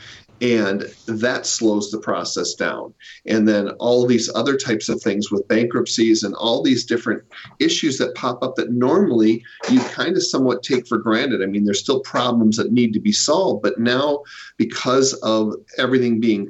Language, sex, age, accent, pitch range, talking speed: English, male, 40-59, American, 105-125 Hz, 180 wpm